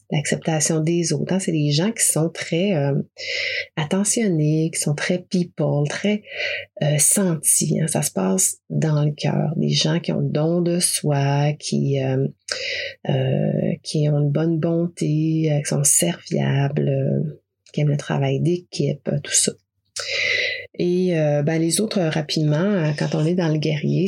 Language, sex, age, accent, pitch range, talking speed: French, female, 30-49, Canadian, 145-175 Hz, 155 wpm